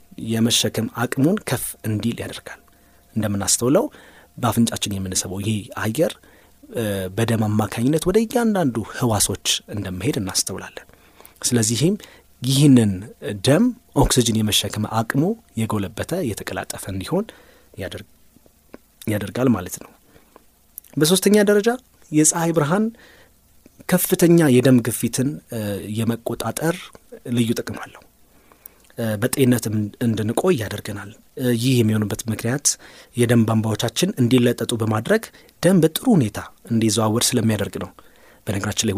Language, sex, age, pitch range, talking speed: Amharic, male, 30-49, 105-135 Hz, 90 wpm